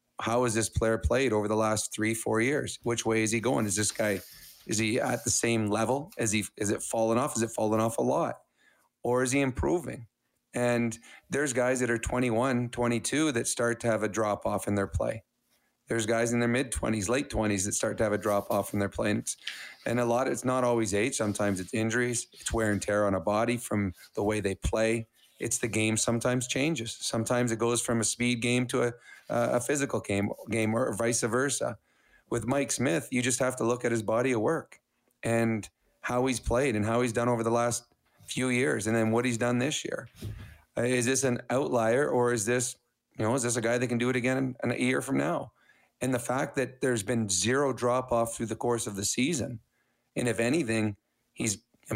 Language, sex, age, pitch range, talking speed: English, male, 30-49, 110-125 Hz, 225 wpm